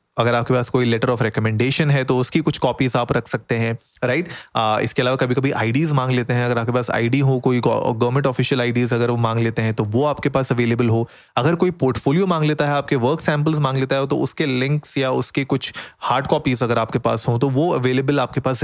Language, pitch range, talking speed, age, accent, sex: Hindi, 120-145 Hz, 240 wpm, 20-39, native, male